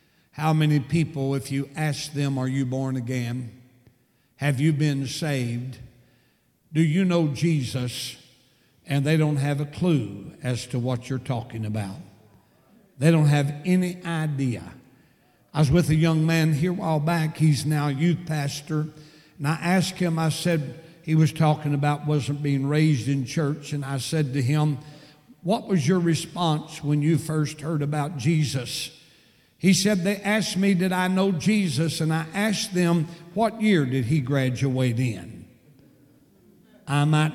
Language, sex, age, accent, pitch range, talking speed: English, male, 60-79, American, 140-170 Hz, 160 wpm